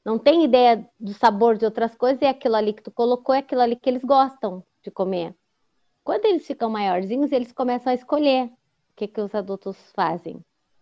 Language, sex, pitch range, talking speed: Portuguese, female, 205-265 Hz, 200 wpm